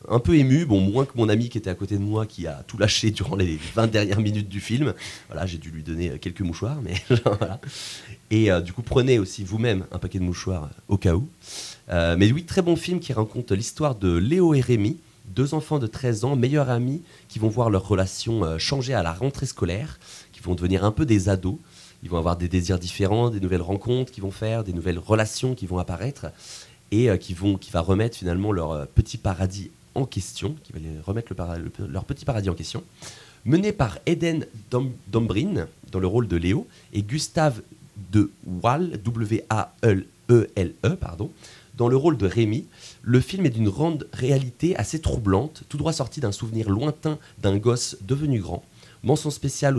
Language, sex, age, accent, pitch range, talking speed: French, male, 30-49, French, 95-130 Hz, 210 wpm